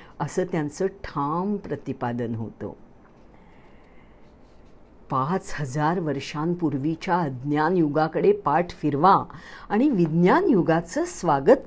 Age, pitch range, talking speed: 50-69, 160-265 Hz, 95 wpm